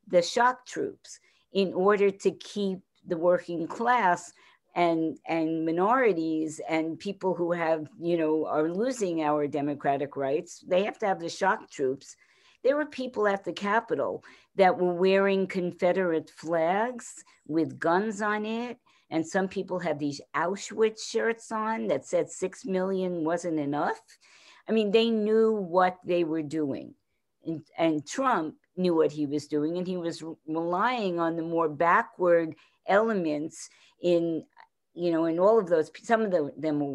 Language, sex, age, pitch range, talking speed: English, female, 50-69, 155-190 Hz, 155 wpm